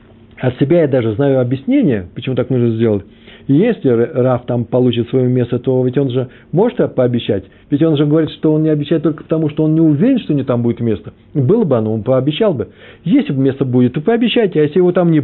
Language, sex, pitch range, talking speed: Russian, male, 110-150 Hz, 230 wpm